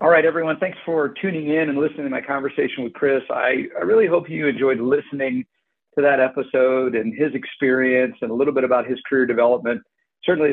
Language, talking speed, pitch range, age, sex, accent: English, 205 wpm, 120-145 Hz, 50-69, male, American